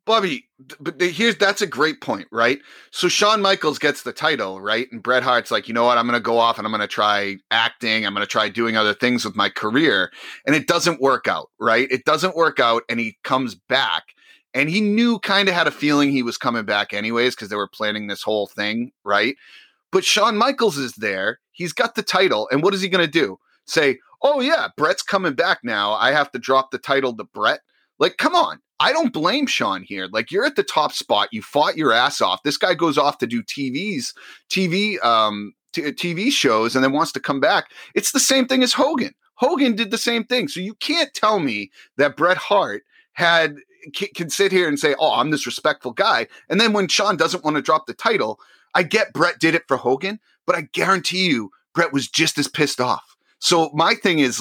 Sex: male